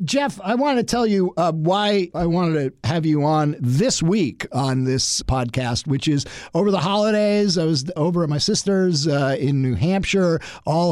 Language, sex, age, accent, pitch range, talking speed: English, male, 50-69, American, 150-195 Hz, 190 wpm